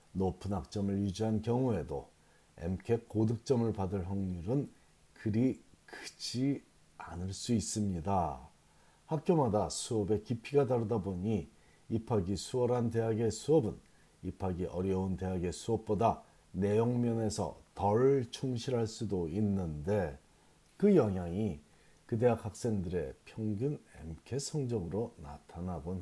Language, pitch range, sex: Korean, 90-125 Hz, male